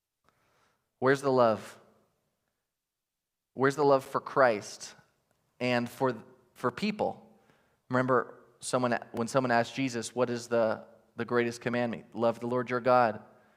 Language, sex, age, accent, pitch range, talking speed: English, male, 20-39, American, 125-165 Hz, 130 wpm